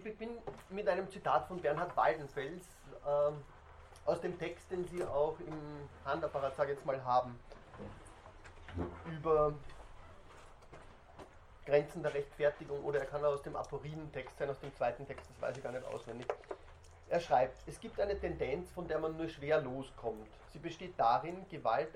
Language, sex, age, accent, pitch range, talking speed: German, male, 30-49, German, 125-180 Hz, 165 wpm